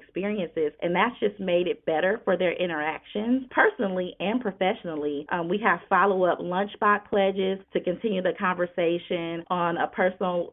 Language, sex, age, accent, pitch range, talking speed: English, female, 30-49, American, 170-195 Hz, 160 wpm